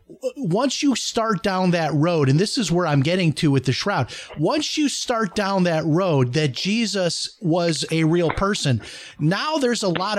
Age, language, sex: 30-49, English, male